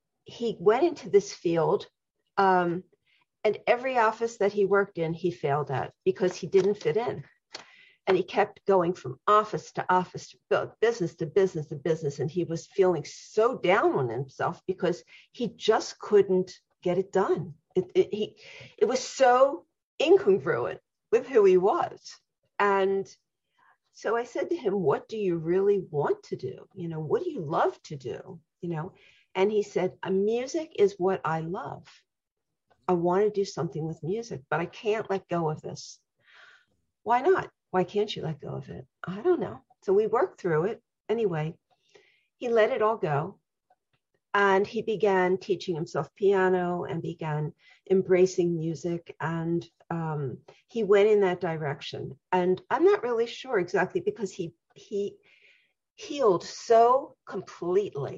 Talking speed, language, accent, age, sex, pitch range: 160 wpm, English, American, 50-69, female, 175-230 Hz